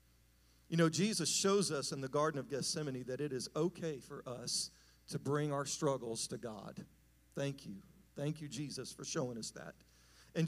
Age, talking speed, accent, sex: 50-69, 185 wpm, American, male